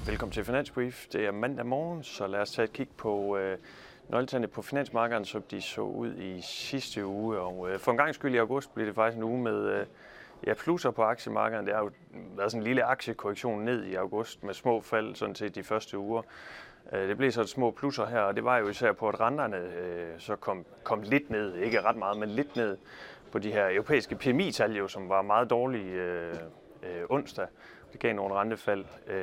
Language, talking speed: Danish, 225 wpm